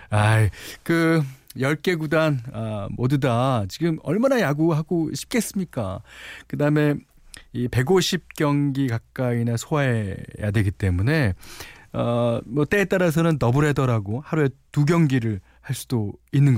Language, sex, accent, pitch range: Korean, male, native, 95-150 Hz